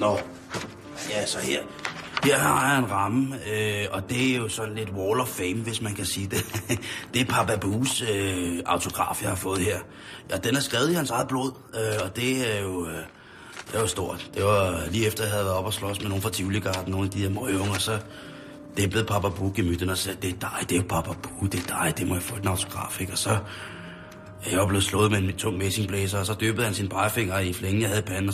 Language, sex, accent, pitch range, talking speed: Danish, male, native, 95-110 Hz, 240 wpm